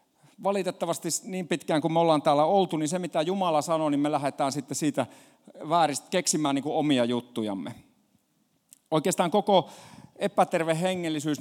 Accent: native